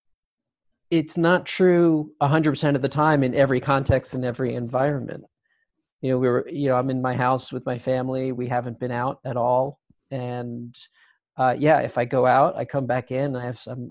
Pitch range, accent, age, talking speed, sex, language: 120-135 Hz, American, 40-59, 200 wpm, male, English